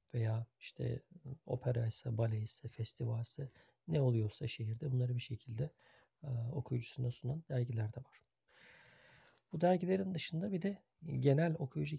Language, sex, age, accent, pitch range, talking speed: Turkish, male, 40-59, native, 120-145 Hz, 135 wpm